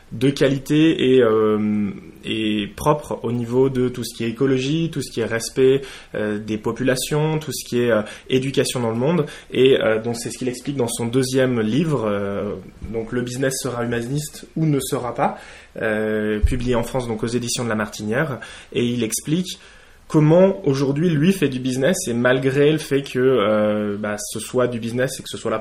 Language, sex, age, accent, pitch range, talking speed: English, male, 20-39, French, 110-130 Hz, 210 wpm